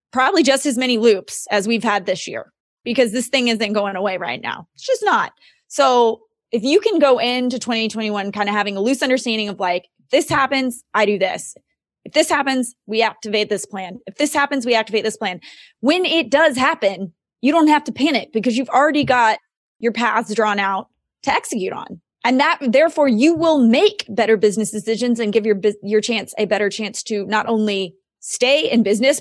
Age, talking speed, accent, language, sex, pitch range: 20-39, 200 wpm, American, English, female, 205-260 Hz